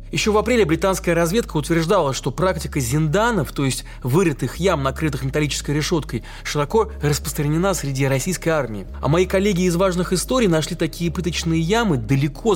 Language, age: Russian, 20-39